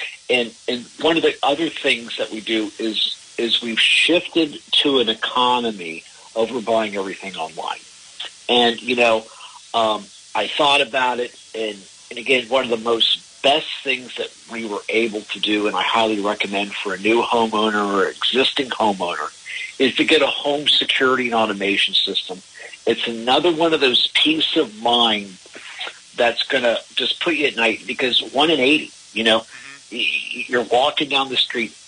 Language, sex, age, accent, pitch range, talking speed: English, male, 50-69, American, 105-125 Hz, 170 wpm